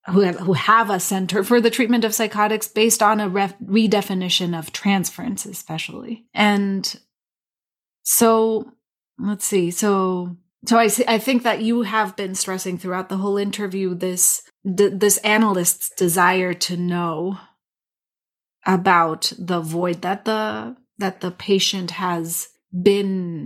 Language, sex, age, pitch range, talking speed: English, female, 30-49, 180-210 Hz, 140 wpm